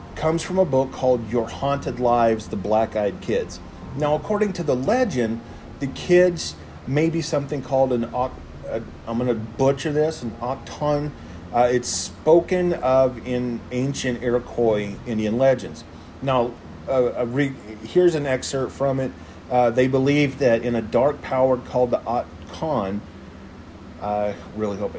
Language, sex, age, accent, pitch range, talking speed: English, male, 40-59, American, 110-135 Hz, 150 wpm